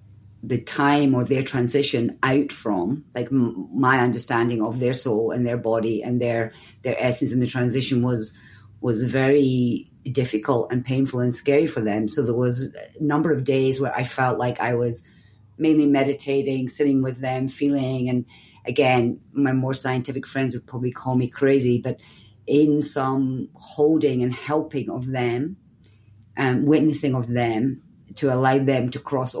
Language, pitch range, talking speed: English, 120-140 Hz, 165 wpm